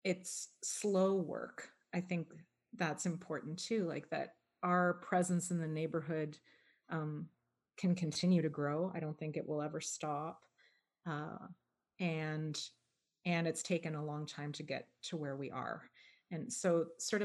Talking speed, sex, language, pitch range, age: 155 wpm, female, English, 150-175 Hz, 30-49